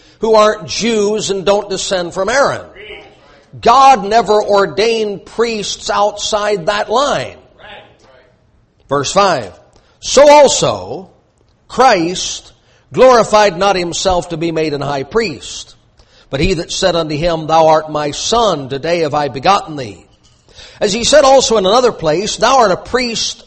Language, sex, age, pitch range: English, male, 50-69, 175-245 Hz